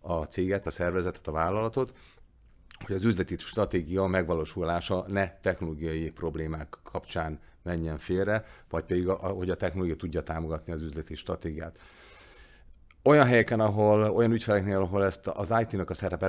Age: 40-59